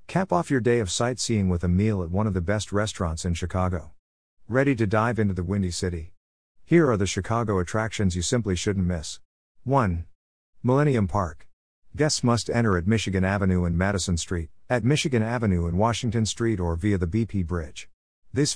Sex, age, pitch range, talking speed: male, 50-69, 90-115 Hz, 185 wpm